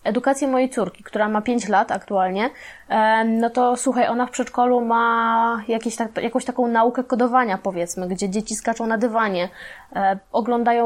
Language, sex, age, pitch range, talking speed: Polish, female, 20-39, 215-265 Hz, 145 wpm